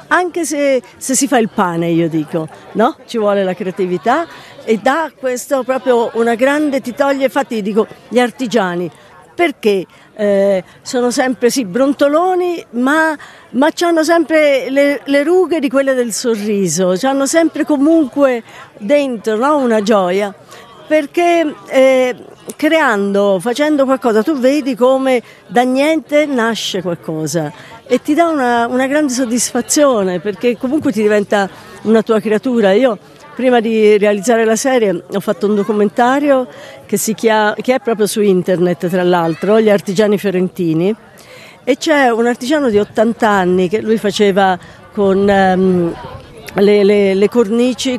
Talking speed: 145 wpm